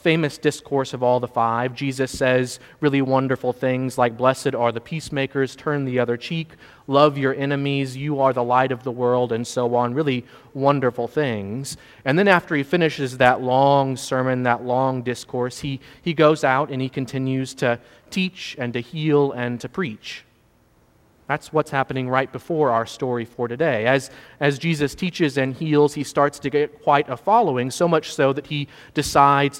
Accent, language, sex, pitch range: American, English, male, 125-150 Hz